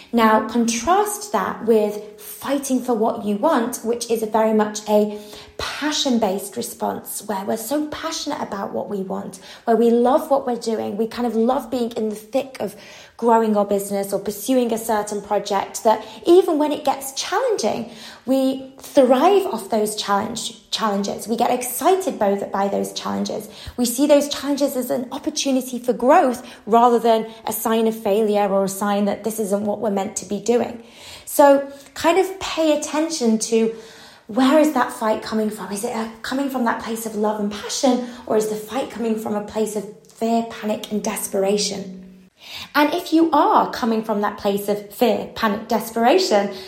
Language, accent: English, British